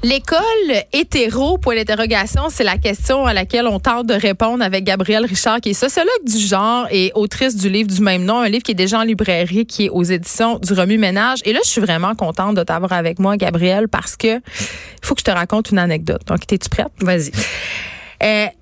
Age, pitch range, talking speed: 30-49, 195-245 Hz, 220 wpm